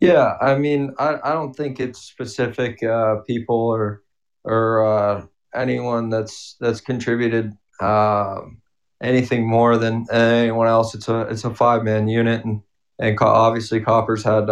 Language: English